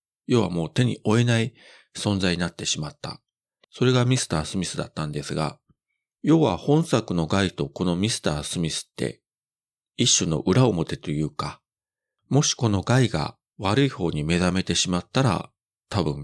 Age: 40-59